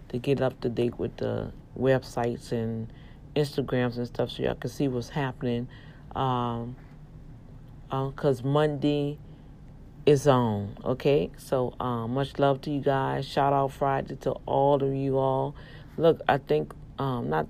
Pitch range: 125-150 Hz